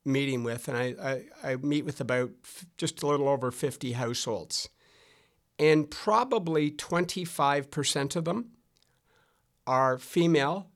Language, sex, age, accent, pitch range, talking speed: English, male, 60-79, American, 135-170 Hz, 115 wpm